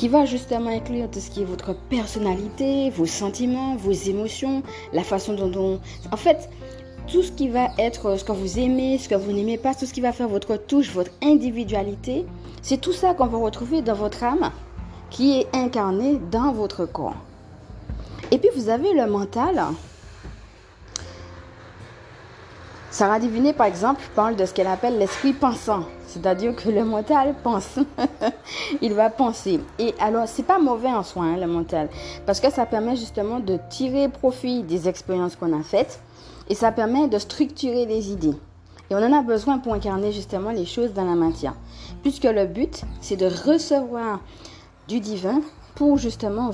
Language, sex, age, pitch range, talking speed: French, female, 30-49, 190-265 Hz, 175 wpm